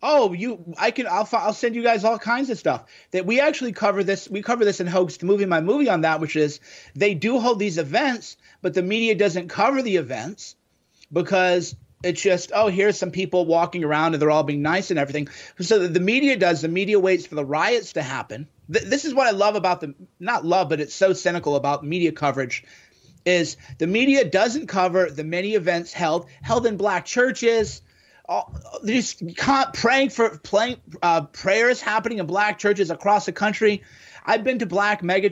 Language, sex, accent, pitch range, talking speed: English, male, American, 170-220 Hz, 200 wpm